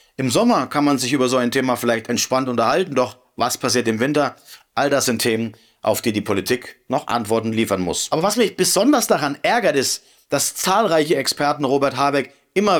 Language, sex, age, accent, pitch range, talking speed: German, male, 40-59, German, 125-155 Hz, 195 wpm